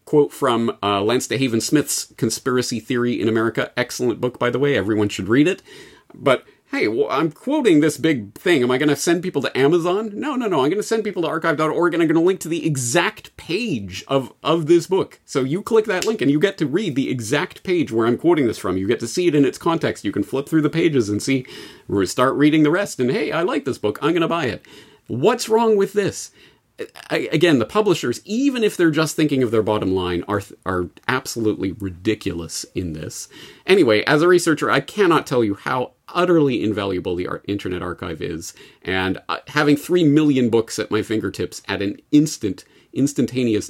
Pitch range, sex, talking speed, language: 105-170 Hz, male, 220 wpm, English